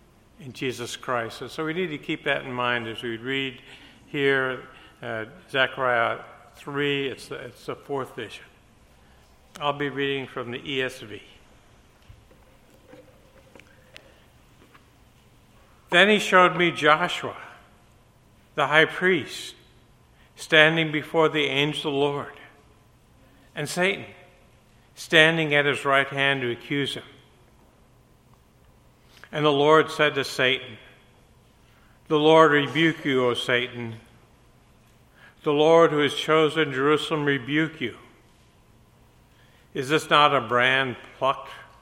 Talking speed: 115 wpm